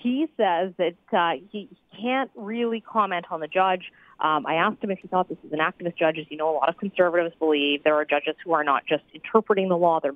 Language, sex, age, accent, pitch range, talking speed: English, female, 40-59, American, 180-235 Hz, 250 wpm